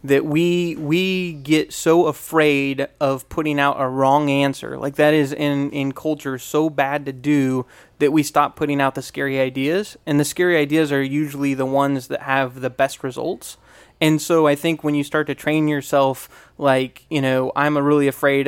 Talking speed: 190 wpm